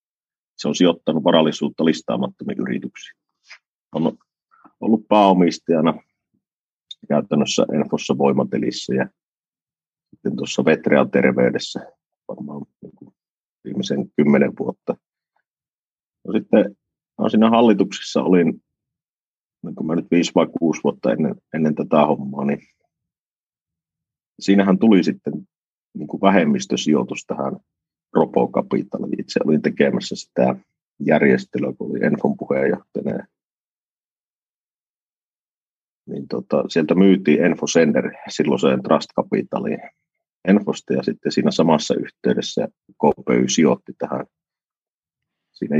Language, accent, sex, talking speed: Finnish, native, male, 100 wpm